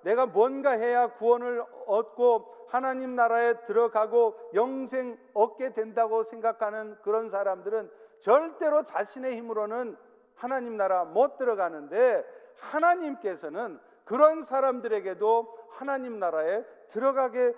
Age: 50-69